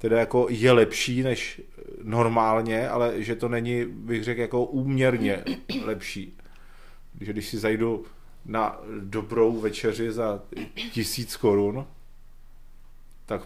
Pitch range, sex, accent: 110-130 Hz, male, native